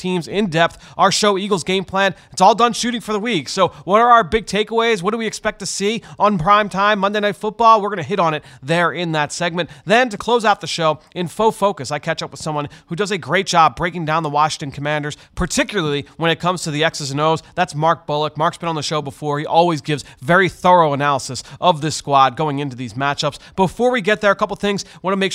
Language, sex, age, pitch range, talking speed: English, male, 30-49, 150-195 Hz, 255 wpm